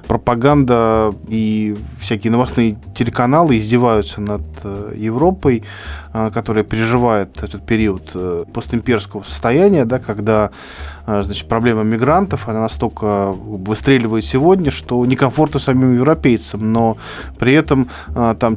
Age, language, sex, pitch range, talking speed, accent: 20-39, Russian, male, 115-145 Hz, 85 wpm, native